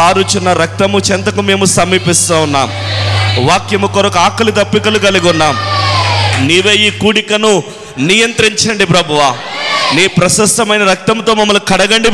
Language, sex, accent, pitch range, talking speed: Telugu, male, native, 155-225 Hz, 110 wpm